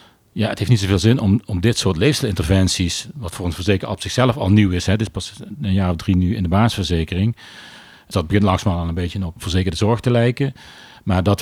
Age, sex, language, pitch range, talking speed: 40-59, male, Dutch, 90-110 Hz, 235 wpm